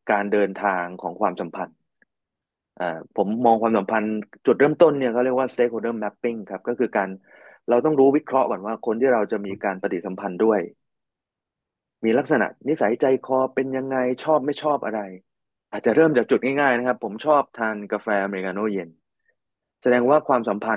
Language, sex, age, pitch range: Thai, male, 20-39, 105-130 Hz